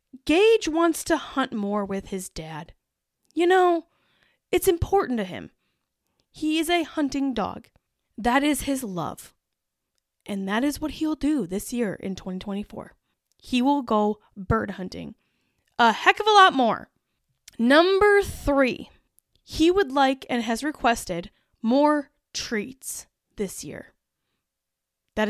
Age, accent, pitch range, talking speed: 10-29, American, 205-310 Hz, 135 wpm